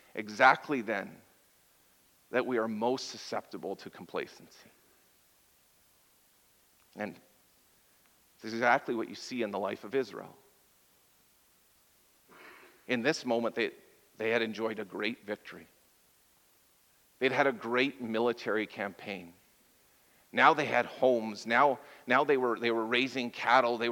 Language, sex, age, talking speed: English, male, 40-59, 125 wpm